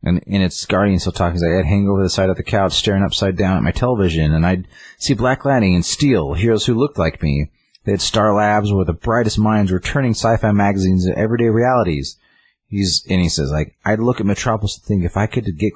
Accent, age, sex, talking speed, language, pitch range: American, 30-49, male, 245 wpm, English, 85-110 Hz